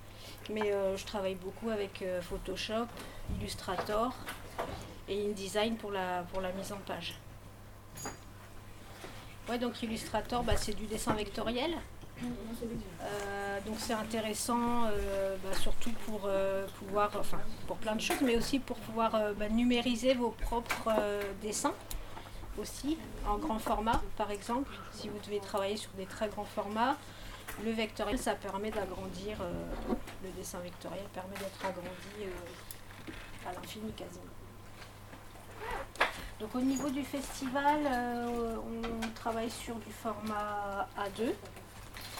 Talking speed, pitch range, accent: 135 wpm, 185-235 Hz, French